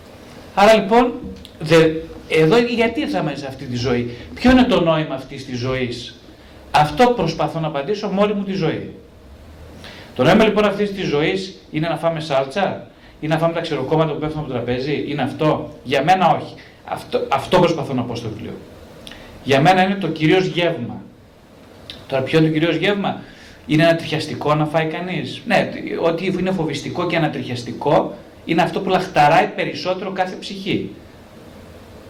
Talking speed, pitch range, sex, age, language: 165 wpm, 125-180 Hz, male, 30-49, Greek